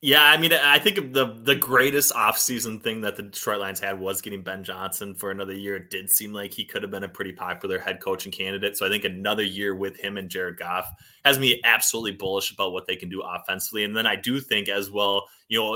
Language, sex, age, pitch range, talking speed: English, male, 20-39, 100-115 Hz, 250 wpm